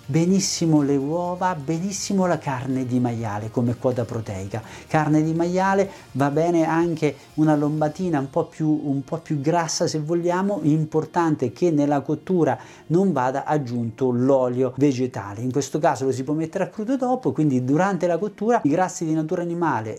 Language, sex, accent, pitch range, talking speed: Italian, male, native, 130-180 Hz, 160 wpm